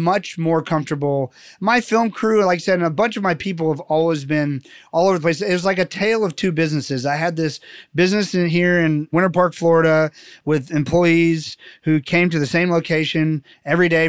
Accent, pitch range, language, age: American, 150-175 Hz, English, 30-49